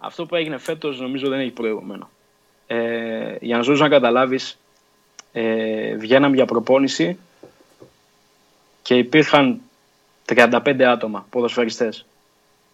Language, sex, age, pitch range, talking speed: Greek, male, 20-39, 115-145 Hz, 110 wpm